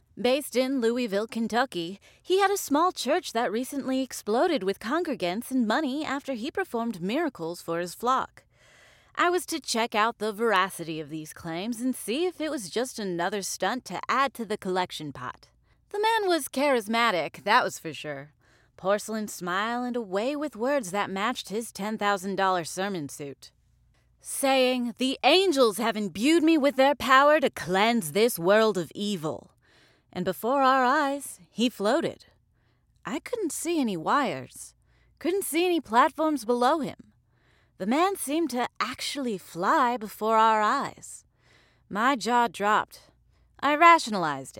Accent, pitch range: American, 195-275 Hz